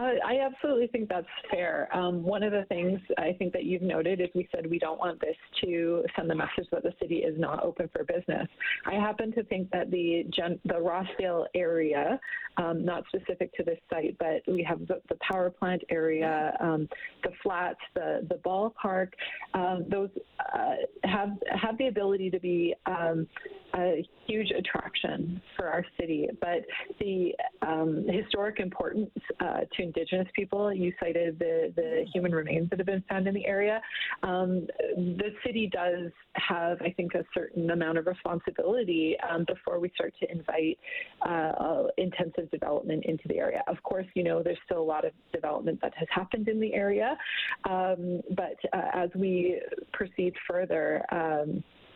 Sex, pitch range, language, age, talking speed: female, 175-220 Hz, English, 30-49, 175 wpm